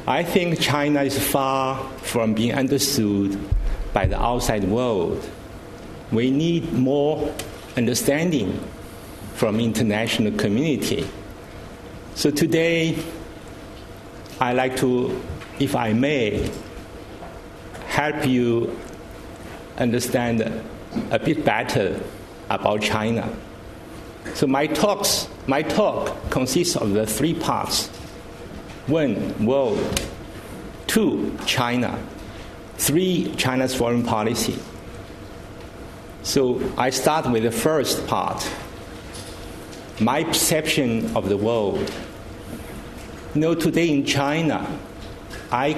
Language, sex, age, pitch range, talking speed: English, male, 60-79, 105-145 Hz, 95 wpm